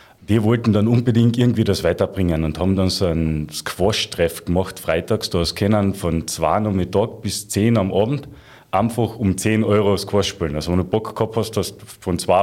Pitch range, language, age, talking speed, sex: 95-115 Hz, German, 30-49, 205 wpm, male